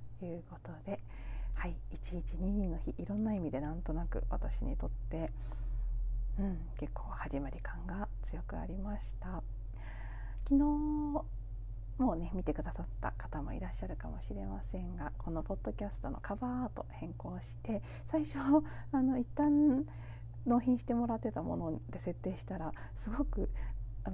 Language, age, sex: Japanese, 40-59, female